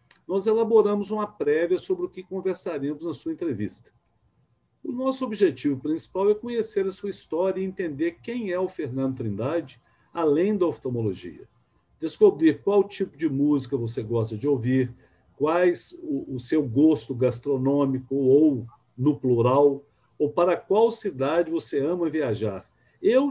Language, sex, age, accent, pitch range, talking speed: Portuguese, male, 60-79, Brazilian, 130-200 Hz, 140 wpm